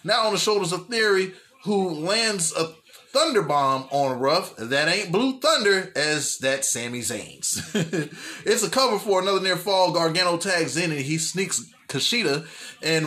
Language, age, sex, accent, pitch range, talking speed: English, 20-39, male, American, 150-195 Hz, 160 wpm